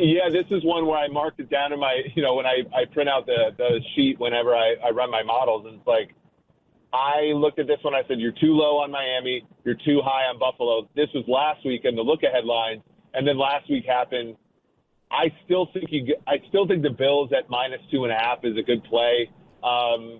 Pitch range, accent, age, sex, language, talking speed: 125-145 Hz, American, 30-49, male, English, 240 wpm